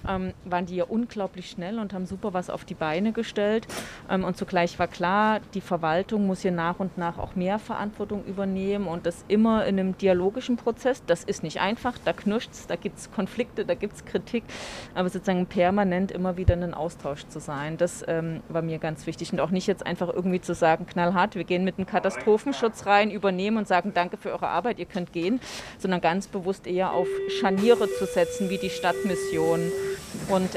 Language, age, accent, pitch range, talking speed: German, 30-49, German, 175-210 Hz, 200 wpm